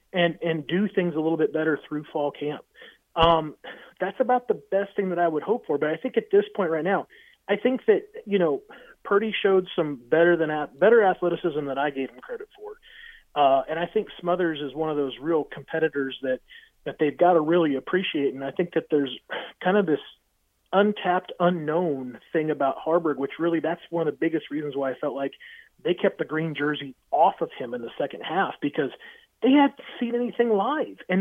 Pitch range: 155-215 Hz